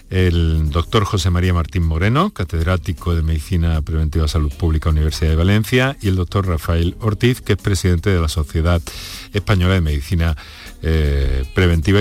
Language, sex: Spanish, male